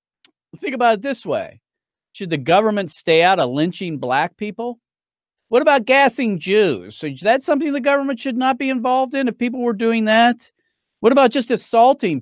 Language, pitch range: English, 145-235 Hz